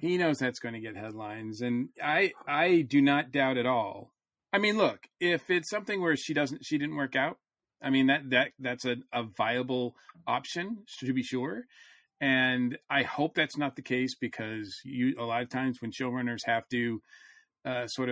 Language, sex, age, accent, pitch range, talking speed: English, male, 40-59, American, 120-150 Hz, 195 wpm